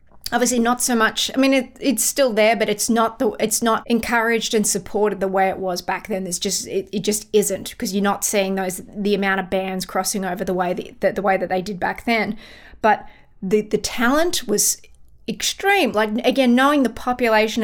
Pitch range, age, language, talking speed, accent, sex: 195-225 Hz, 20-39, English, 220 wpm, Australian, female